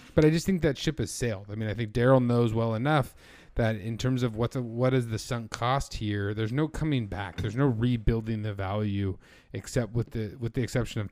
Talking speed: 235 wpm